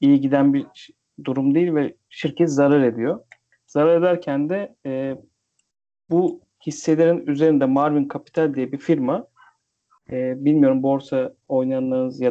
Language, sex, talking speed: Turkish, male, 125 wpm